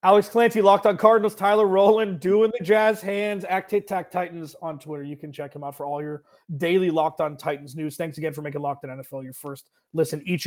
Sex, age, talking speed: male, 30-49, 235 wpm